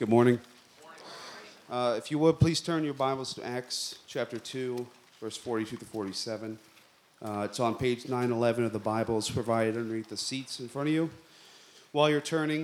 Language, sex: English, male